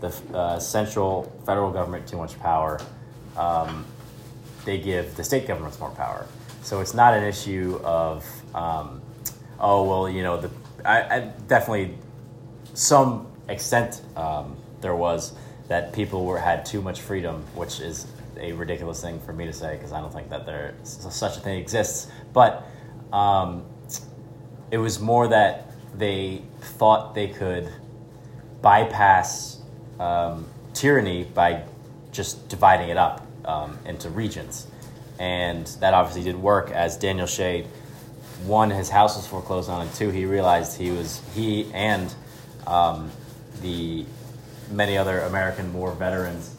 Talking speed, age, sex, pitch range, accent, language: 145 wpm, 20-39, male, 90-115 Hz, American, English